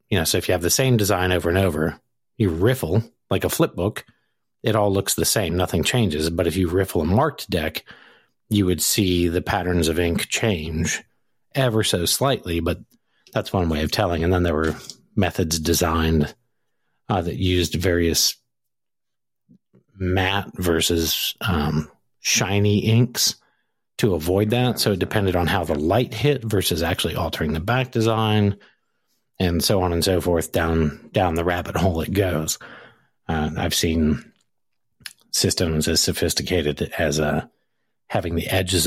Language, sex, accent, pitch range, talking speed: English, male, American, 80-100 Hz, 160 wpm